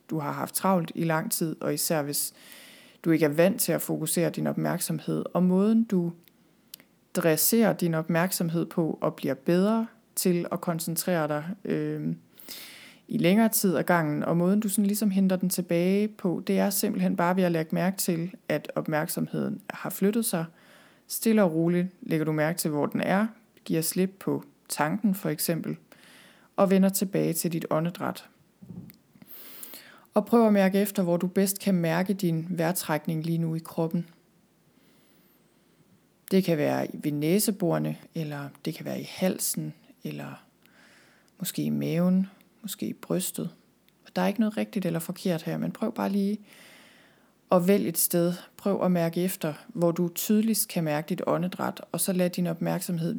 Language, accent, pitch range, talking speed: Danish, native, 165-200 Hz, 170 wpm